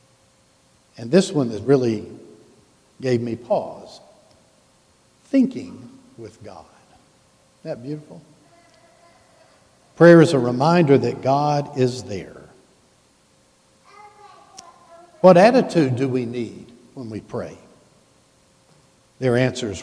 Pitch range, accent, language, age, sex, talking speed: 115-155 Hz, American, English, 60-79, male, 95 wpm